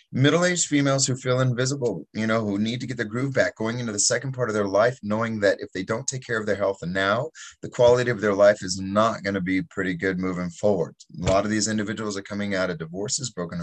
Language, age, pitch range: English, 30-49, 100-125 Hz